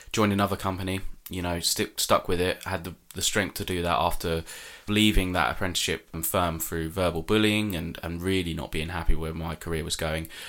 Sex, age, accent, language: male, 20-39, British, English